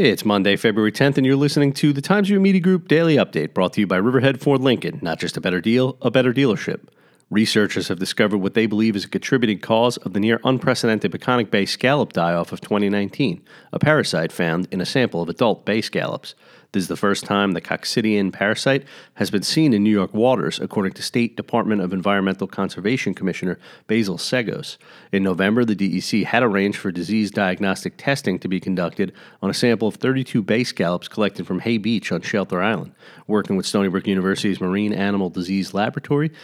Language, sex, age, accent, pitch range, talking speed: English, male, 40-59, American, 95-125 Hz, 200 wpm